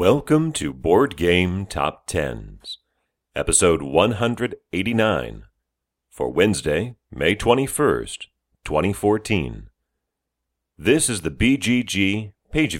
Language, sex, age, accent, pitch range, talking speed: English, male, 40-59, American, 75-110 Hz, 85 wpm